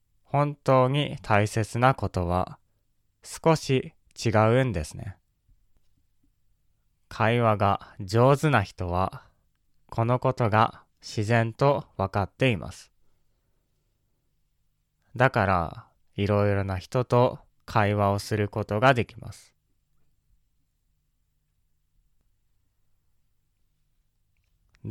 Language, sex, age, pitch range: Japanese, male, 20-39, 100-120 Hz